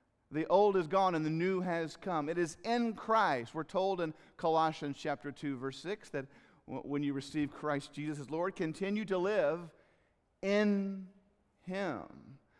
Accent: American